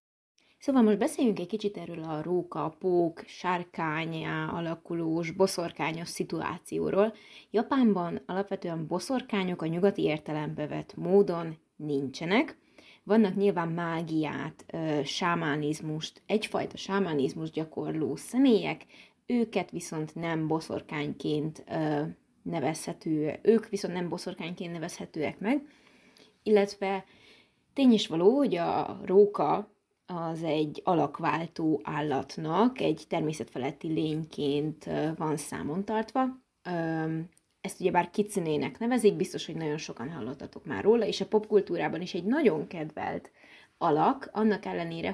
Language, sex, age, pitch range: Hungarian, female, 20-39, 160-205 Hz